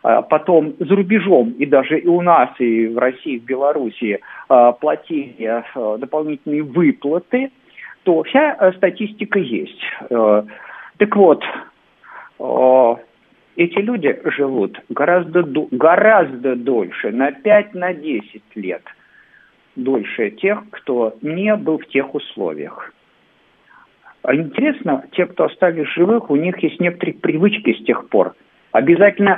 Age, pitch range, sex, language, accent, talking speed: 50-69, 140-205 Hz, male, Russian, native, 110 wpm